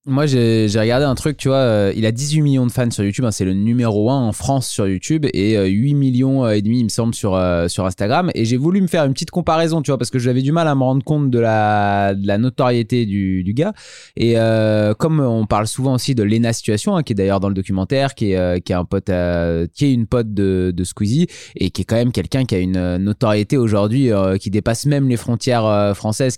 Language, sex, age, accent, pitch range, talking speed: French, male, 20-39, French, 105-140 Hz, 265 wpm